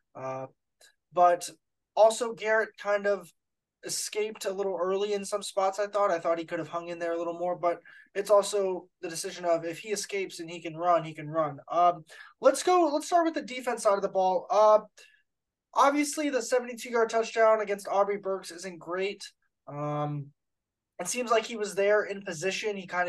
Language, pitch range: English, 170-215 Hz